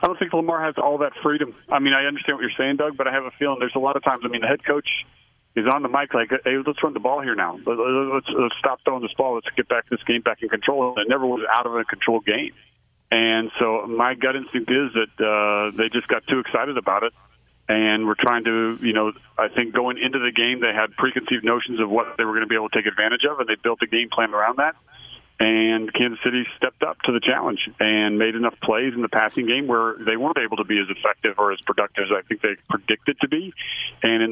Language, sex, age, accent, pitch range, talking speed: English, male, 40-59, American, 110-130 Hz, 265 wpm